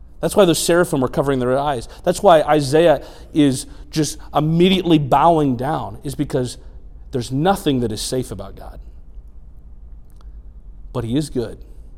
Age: 40-59